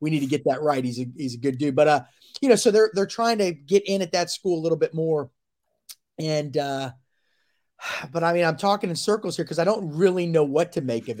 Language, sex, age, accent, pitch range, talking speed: English, male, 30-49, American, 140-195 Hz, 260 wpm